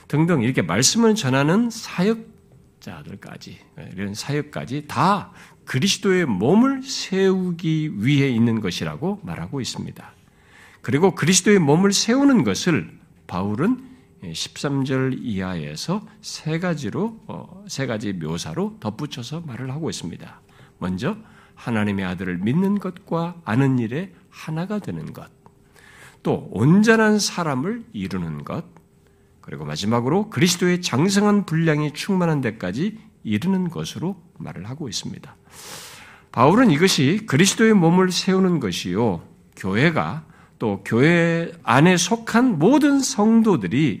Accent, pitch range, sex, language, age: native, 135-205 Hz, male, Korean, 50-69